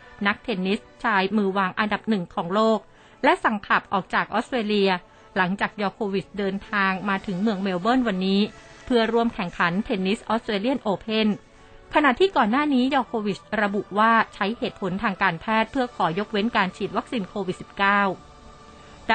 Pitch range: 195-230 Hz